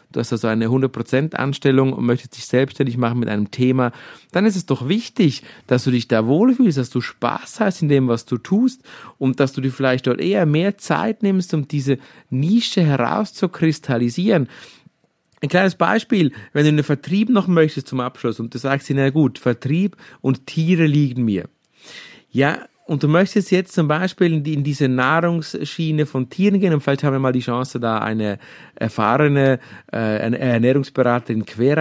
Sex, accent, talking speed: male, German, 185 wpm